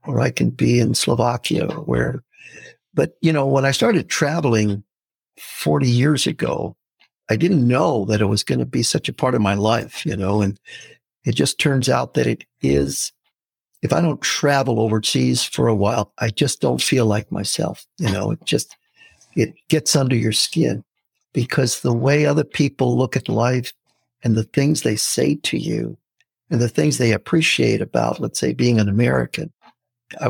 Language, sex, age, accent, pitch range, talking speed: English, male, 60-79, American, 110-140 Hz, 180 wpm